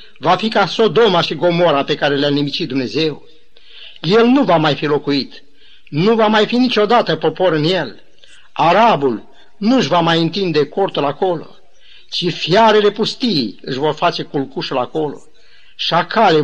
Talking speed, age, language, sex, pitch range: 155 wpm, 50-69, Romanian, male, 155-210 Hz